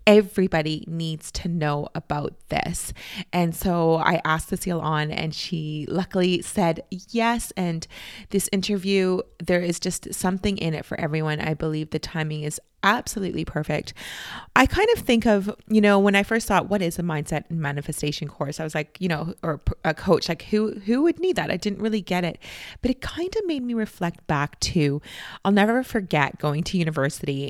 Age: 30-49